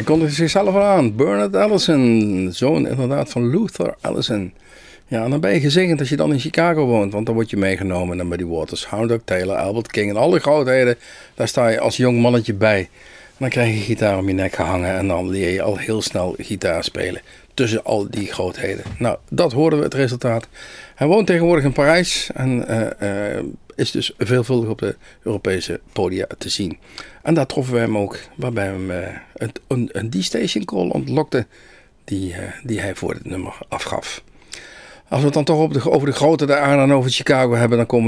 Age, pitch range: 50-69, 105-145 Hz